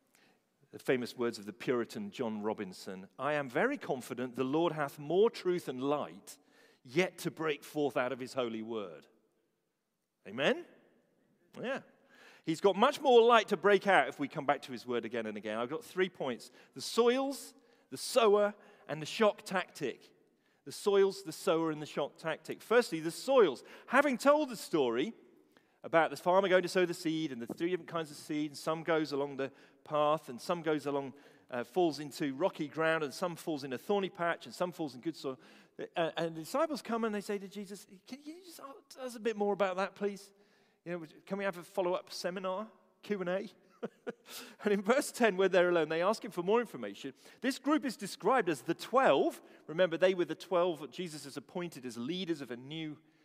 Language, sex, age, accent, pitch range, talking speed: English, male, 40-59, British, 145-205 Hz, 210 wpm